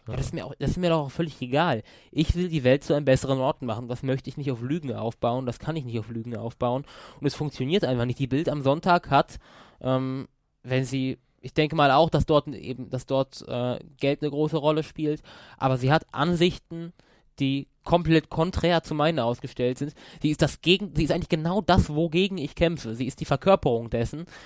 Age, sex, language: 20-39, male, German